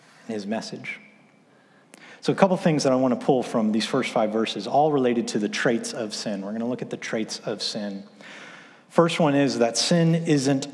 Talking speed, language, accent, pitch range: 210 wpm, English, American, 120-170 Hz